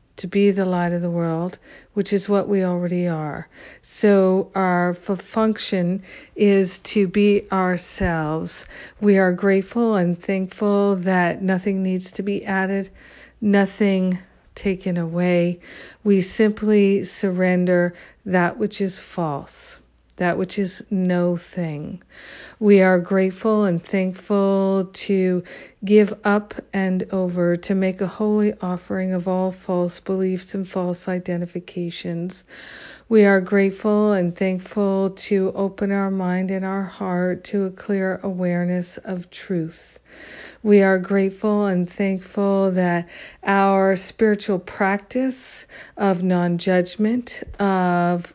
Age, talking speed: 50-69, 120 wpm